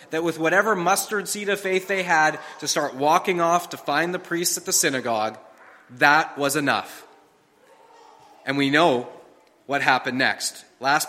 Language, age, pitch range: English, 30-49, 155-220 Hz